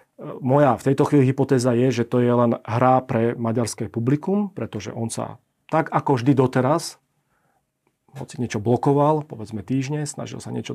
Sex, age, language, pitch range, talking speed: male, 40-59, Slovak, 120-140 Hz, 160 wpm